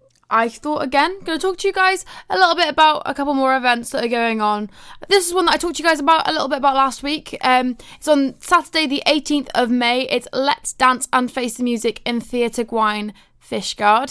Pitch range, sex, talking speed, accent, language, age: 220-265 Hz, female, 240 wpm, British, English, 10-29